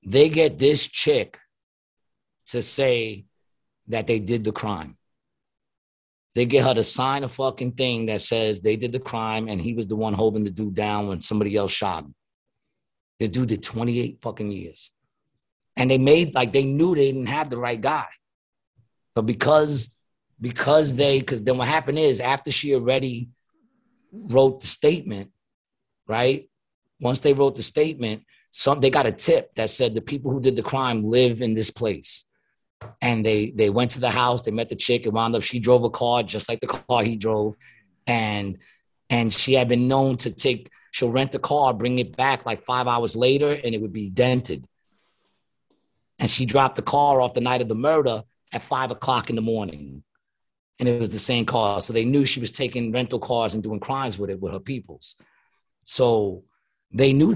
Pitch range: 110-135 Hz